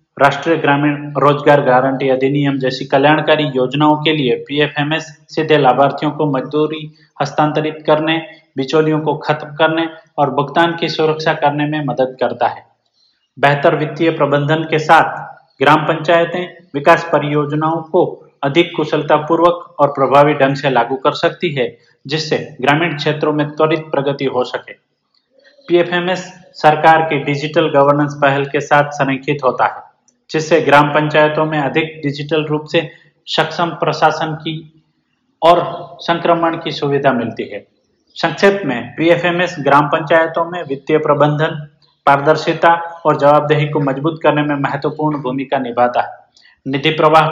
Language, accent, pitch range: Hindi, native, 145-165 Hz